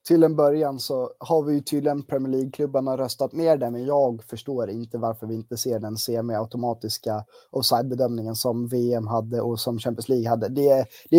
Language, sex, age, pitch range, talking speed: Swedish, male, 20-39, 125-165 Hz, 200 wpm